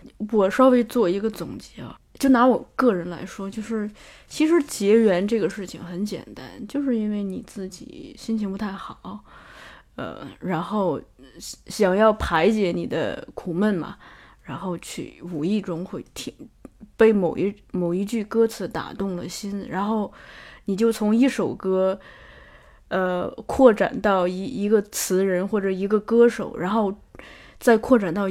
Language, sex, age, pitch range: Chinese, female, 20-39, 190-230 Hz